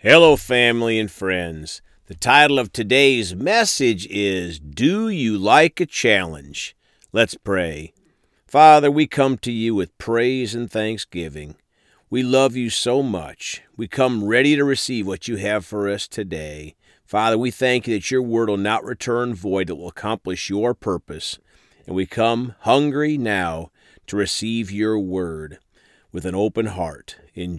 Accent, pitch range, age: American, 95-135 Hz, 50-69